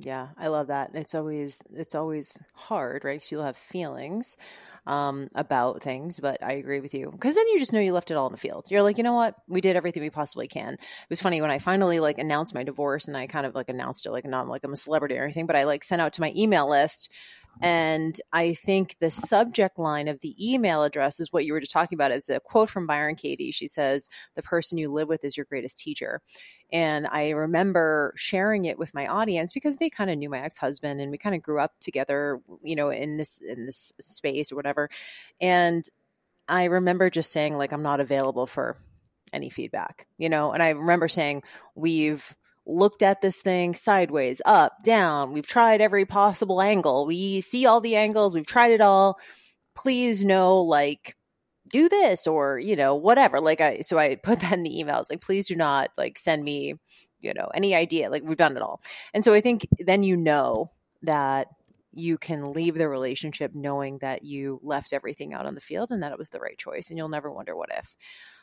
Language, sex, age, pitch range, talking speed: English, female, 30-49, 145-190 Hz, 220 wpm